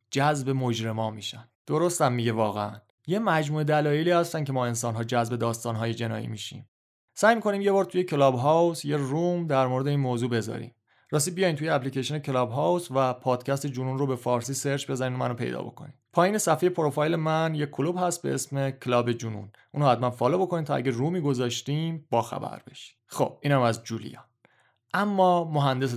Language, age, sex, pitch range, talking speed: Persian, 30-49, male, 120-155 Hz, 180 wpm